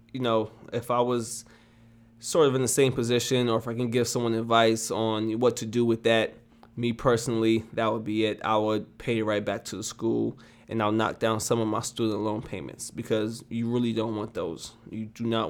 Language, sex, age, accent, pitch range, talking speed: Italian, male, 20-39, American, 110-125 Hz, 220 wpm